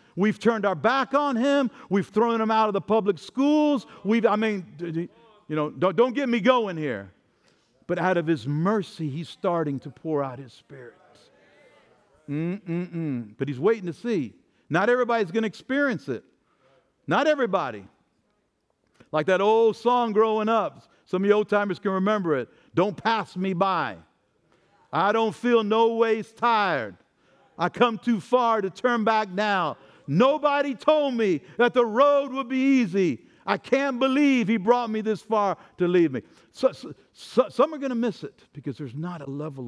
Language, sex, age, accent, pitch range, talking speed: English, male, 60-79, American, 165-250 Hz, 170 wpm